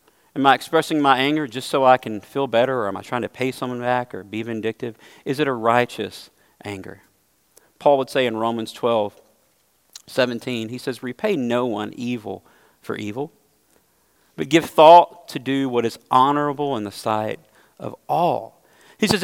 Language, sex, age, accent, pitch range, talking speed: English, male, 40-59, American, 115-180 Hz, 180 wpm